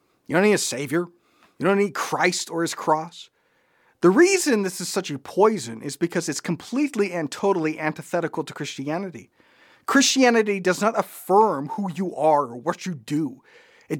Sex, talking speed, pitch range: male, 170 wpm, 155-230 Hz